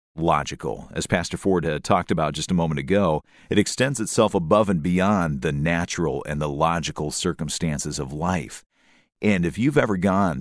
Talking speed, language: 175 wpm, English